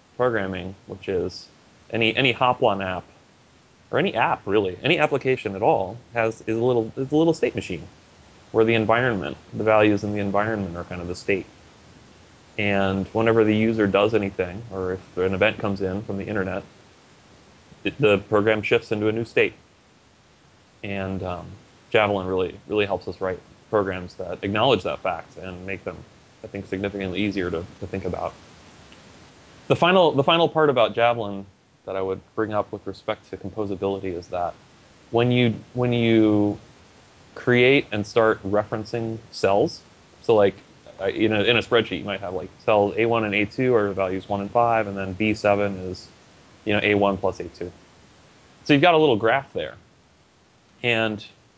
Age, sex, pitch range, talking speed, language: 20-39, male, 95-115 Hz, 175 wpm, English